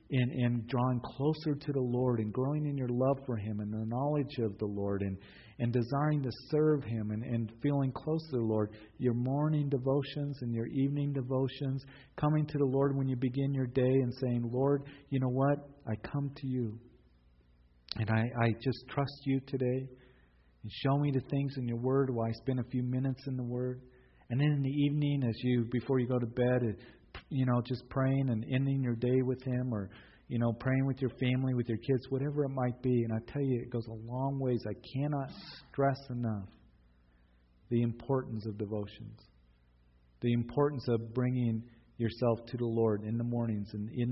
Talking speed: 205 wpm